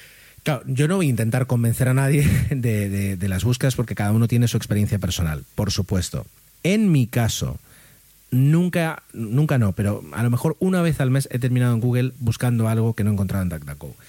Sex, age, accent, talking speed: male, 30-49, Spanish, 210 wpm